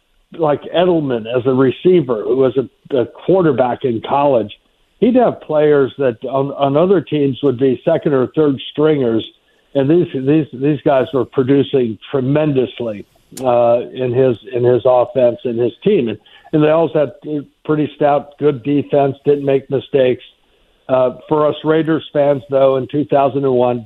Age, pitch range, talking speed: 60-79, 120-145 Hz, 165 wpm